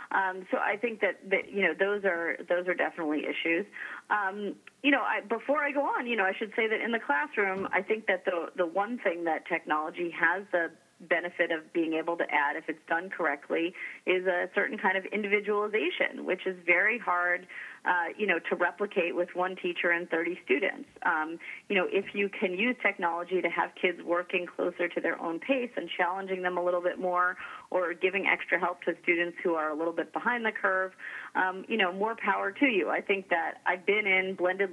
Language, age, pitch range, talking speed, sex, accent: English, 30-49, 170-200 Hz, 215 wpm, female, American